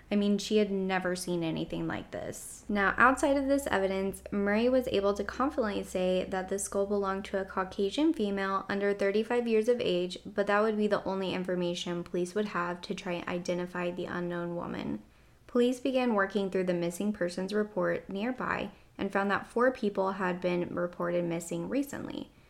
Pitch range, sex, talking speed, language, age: 180-215 Hz, female, 185 wpm, English, 10-29